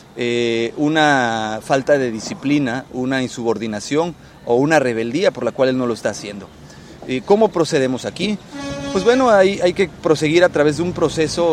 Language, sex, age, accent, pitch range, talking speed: Spanish, male, 30-49, Mexican, 130-170 Hz, 170 wpm